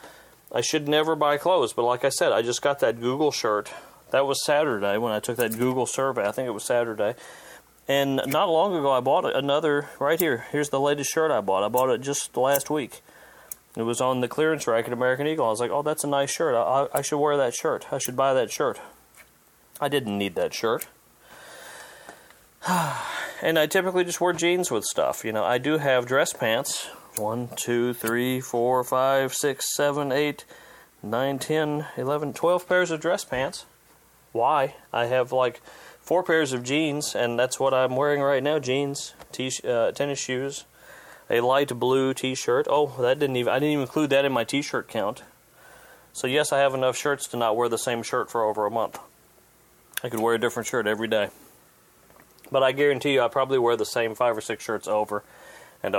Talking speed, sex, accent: 205 wpm, male, American